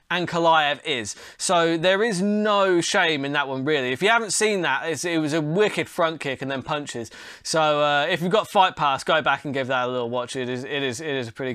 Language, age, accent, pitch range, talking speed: English, 20-39, British, 155-210 Hz, 260 wpm